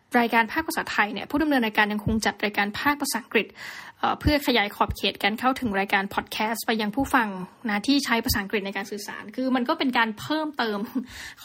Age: 10-29